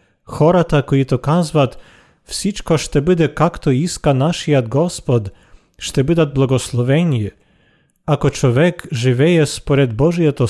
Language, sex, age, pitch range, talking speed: Bulgarian, male, 40-59, 125-160 Hz, 105 wpm